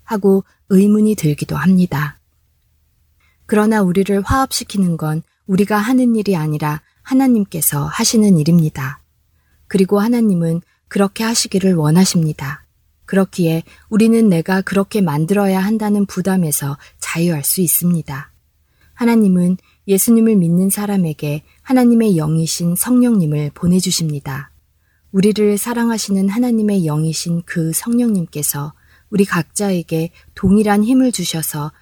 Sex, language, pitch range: female, Korean, 155-205 Hz